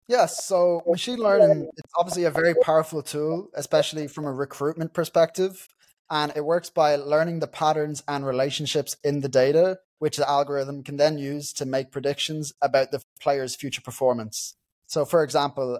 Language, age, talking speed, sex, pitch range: English, 20-39, 165 wpm, male, 140-160 Hz